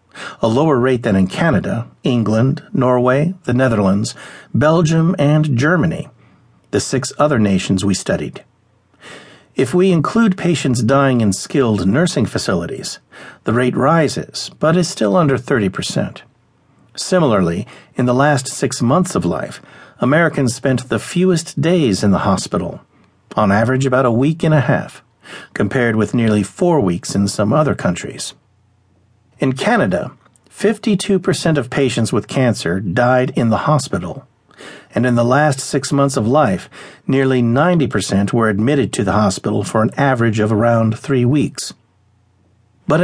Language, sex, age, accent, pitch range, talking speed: English, male, 50-69, American, 105-145 Hz, 145 wpm